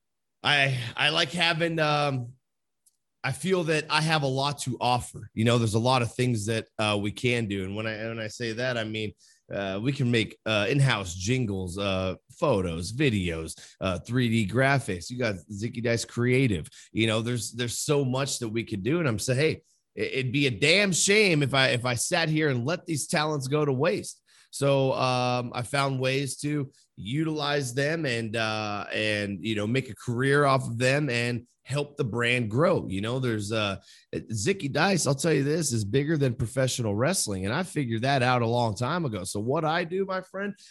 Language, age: English, 30-49